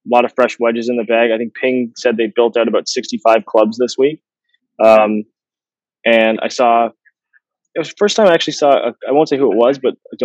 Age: 20-39